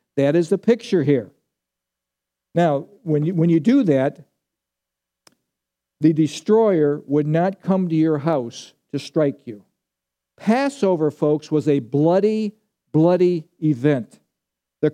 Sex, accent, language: male, American, English